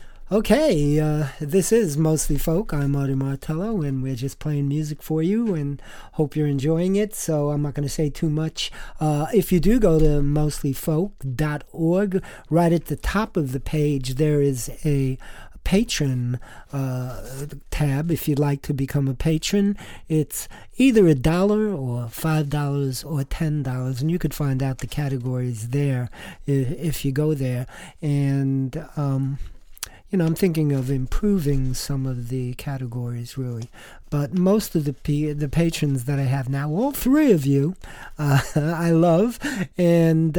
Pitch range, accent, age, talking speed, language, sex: 135-170 Hz, American, 50-69, 160 wpm, English, male